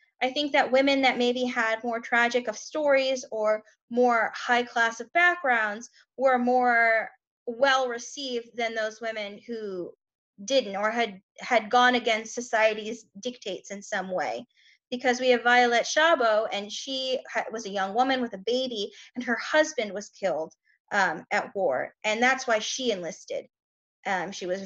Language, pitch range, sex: English, 205-255 Hz, female